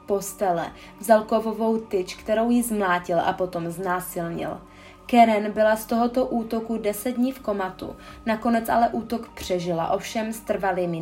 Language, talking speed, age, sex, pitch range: Czech, 140 wpm, 20-39, female, 195-230 Hz